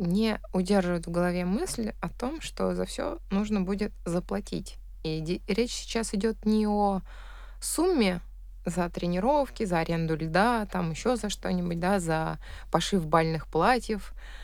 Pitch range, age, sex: 170-210 Hz, 20-39, female